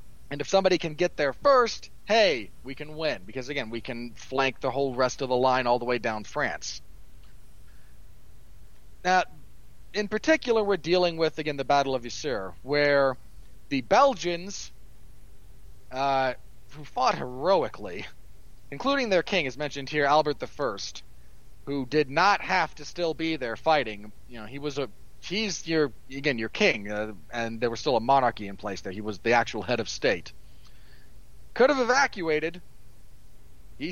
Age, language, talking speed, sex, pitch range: 40-59, English, 165 wpm, male, 120-180 Hz